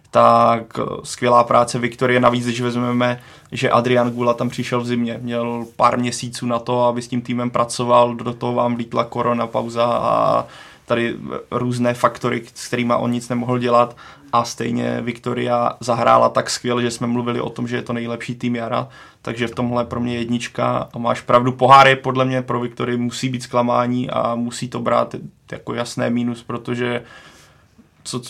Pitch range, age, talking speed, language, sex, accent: 120-125 Hz, 20-39, 175 wpm, Czech, male, native